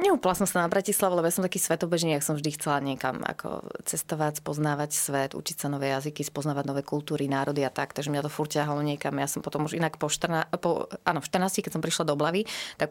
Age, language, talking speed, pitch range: 30-49, Slovak, 230 wpm, 150-195 Hz